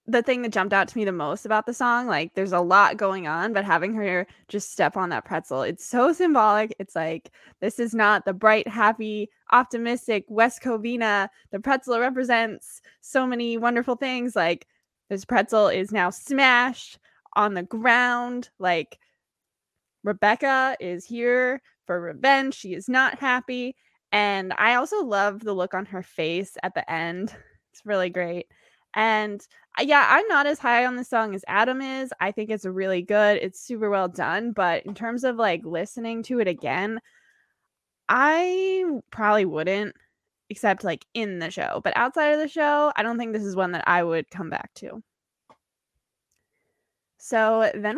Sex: female